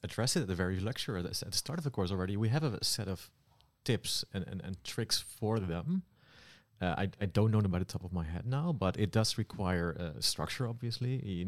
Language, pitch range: English, 90-115 Hz